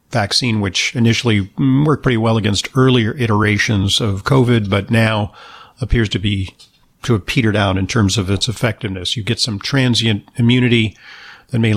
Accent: American